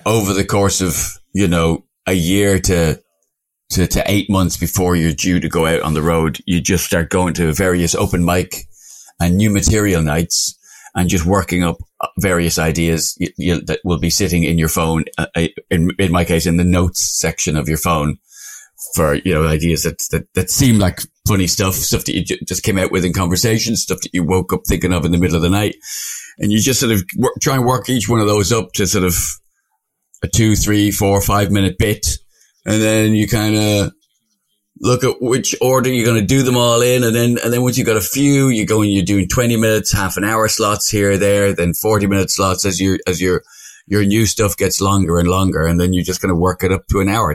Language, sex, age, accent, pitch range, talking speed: English, male, 30-49, British, 85-105 Hz, 230 wpm